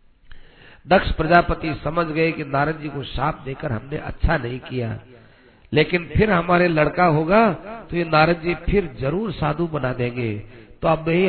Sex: male